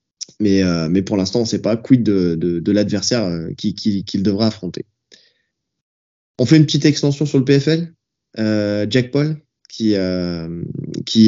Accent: French